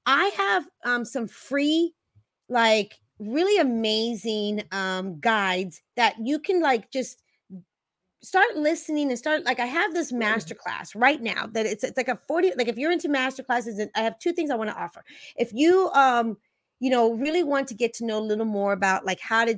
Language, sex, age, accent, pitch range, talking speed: English, female, 30-49, American, 210-270 Hz, 195 wpm